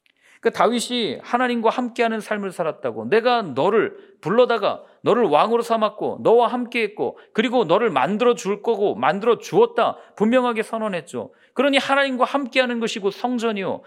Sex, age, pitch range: male, 40-59, 175-220 Hz